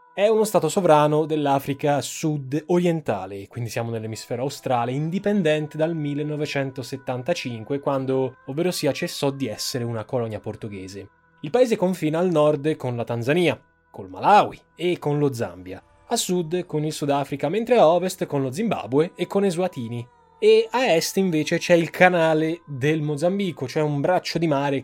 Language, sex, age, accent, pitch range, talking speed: Italian, male, 20-39, native, 125-170 Hz, 155 wpm